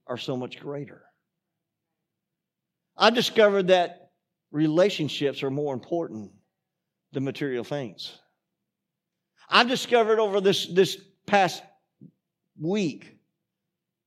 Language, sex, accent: English, male, American